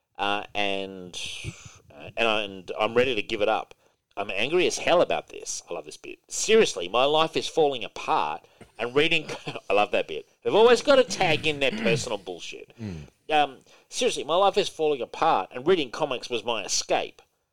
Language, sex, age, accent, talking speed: English, male, 50-69, Australian, 180 wpm